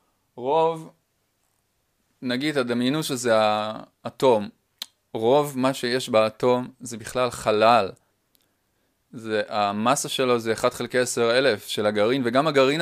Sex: male